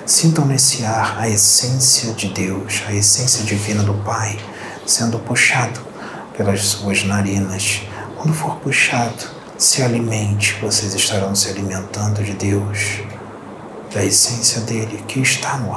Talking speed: 130 wpm